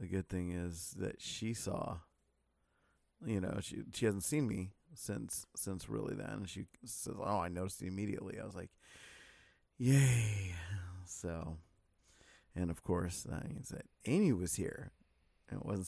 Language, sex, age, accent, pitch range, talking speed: English, male, 30-49, American, 85-110 Hz, 160 wpm